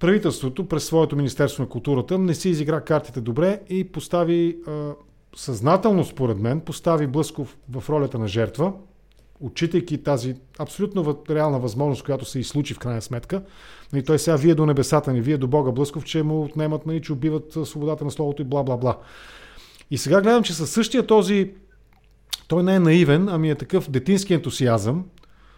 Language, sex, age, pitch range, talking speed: English, male, 40-59, 130-165 Hz, 165 wpm